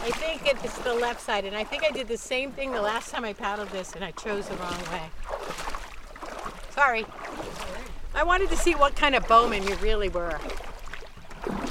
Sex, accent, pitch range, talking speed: female, American, 215-270 Hz, 195 wpm